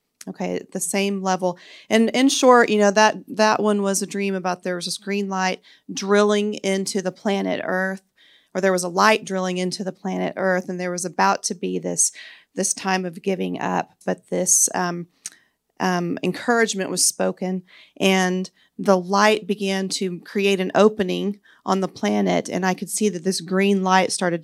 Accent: American